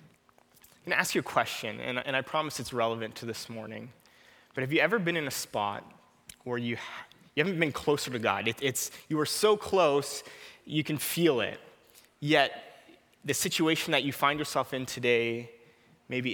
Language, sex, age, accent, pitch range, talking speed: English, male, 20-39, American, 125-155 Hz, 185 wpm